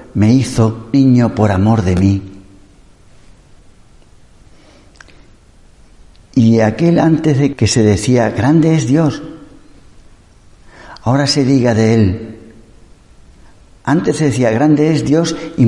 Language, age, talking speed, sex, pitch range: Spanish, 60-79, 110 wpm, male, 100-145 Hz